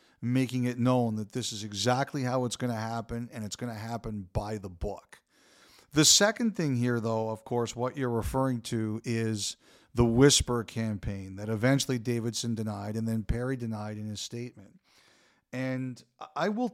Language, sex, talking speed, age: English, male, 175 wpm, 40-59